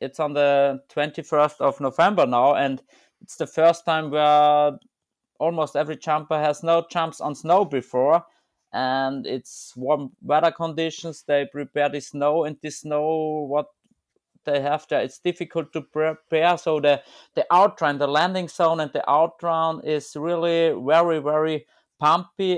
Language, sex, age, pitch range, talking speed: English, male, 30-49, 140-165 Hz, 150 wpm